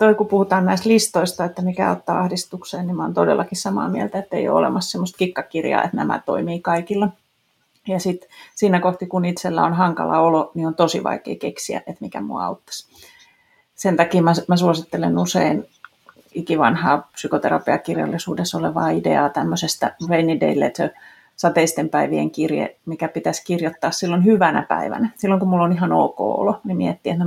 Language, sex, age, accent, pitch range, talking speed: Finnish, female, 30-49, native, 160-190 Hz, 165 wpm